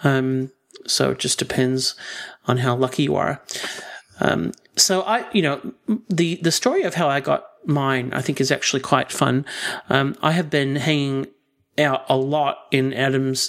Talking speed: 175 wpm